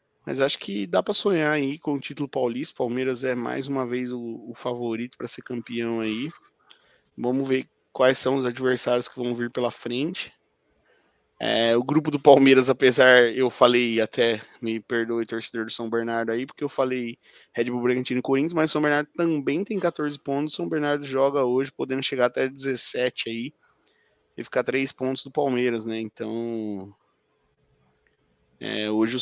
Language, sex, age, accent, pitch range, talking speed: Portuguese, male, 20-39, Brazilian, 120-145 Hz, 175 wpm